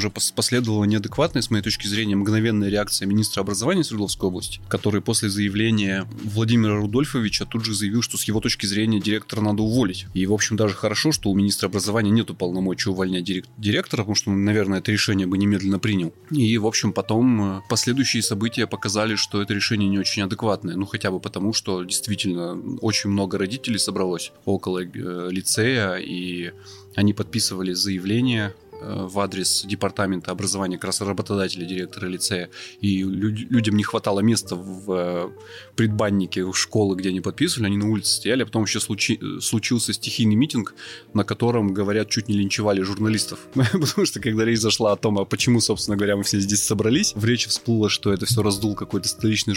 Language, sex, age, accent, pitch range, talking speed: Russian, male, 20-39, native, 100-115 Hz, 165 wpm